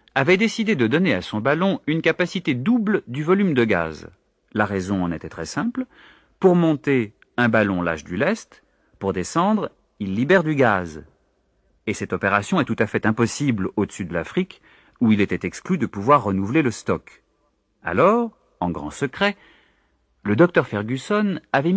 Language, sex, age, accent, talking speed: French, male, 40-59, French, 170 wpm